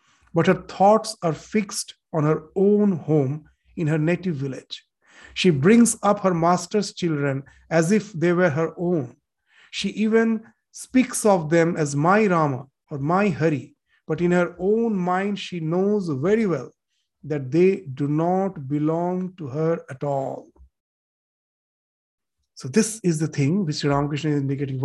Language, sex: English, male